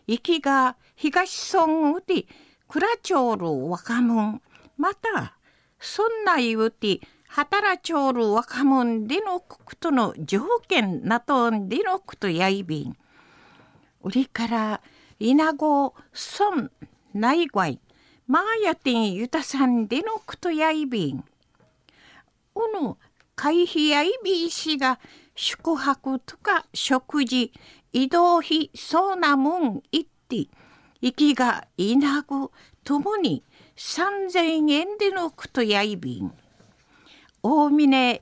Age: 50-69